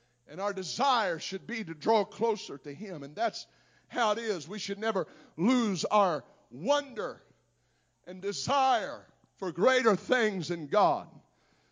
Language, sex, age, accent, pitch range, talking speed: English, male, 50-69, American, 135-175 Hz, 145 wpm